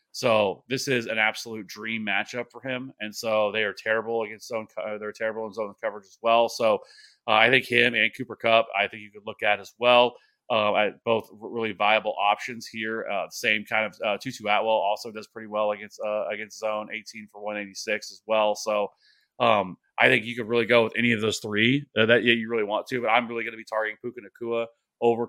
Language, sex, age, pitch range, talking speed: English, male, 30-49, 105-115 Hz, 230 wpm